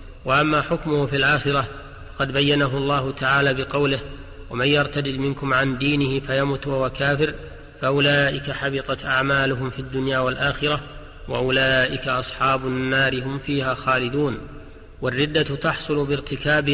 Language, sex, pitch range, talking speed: Arabic, male, 130-145 Hz, 110 wpm